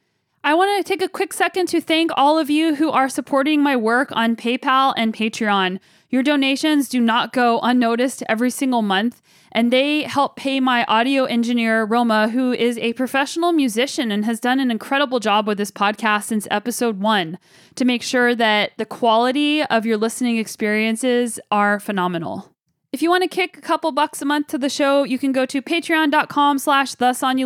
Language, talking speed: English, 190 wpm